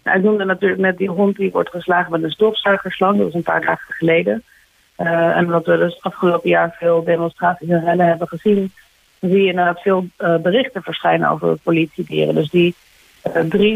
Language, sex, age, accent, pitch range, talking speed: Dutch, female, 30-49, Dutch, 170-195 Hz, 200 wpm